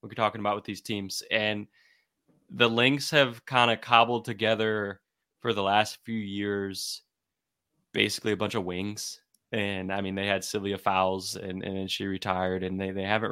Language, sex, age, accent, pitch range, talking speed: English, male, 20-39, American, 100-115 Hz, 175 wpm